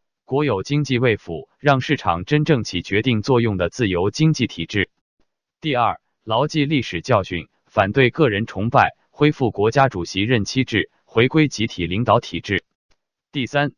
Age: 20-39